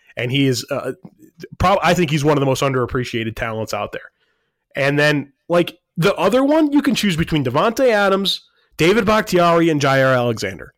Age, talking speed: 20-39, 185 wpm